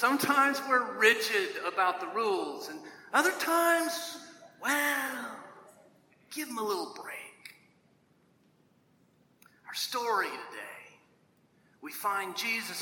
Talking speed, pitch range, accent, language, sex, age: 100 wpm, 215-295 Hz, American, English, male, 40-59